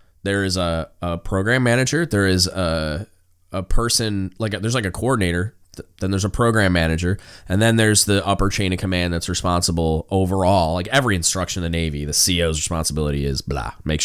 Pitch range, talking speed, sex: 90-125 Hz, 190 wpm, male